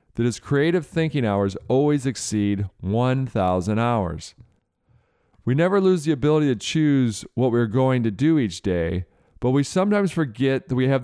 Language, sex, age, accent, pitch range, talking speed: English, male, 40-59, American, 105-140 Hz, 170 wpm